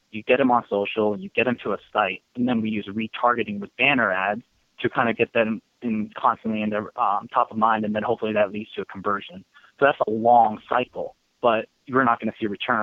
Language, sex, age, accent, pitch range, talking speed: English, male, 20-39, American, 105-120 Hz, 255 wpm